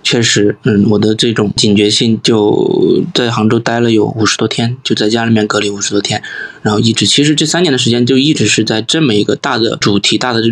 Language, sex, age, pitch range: Chinese, male, 20-39, 110-135 Hz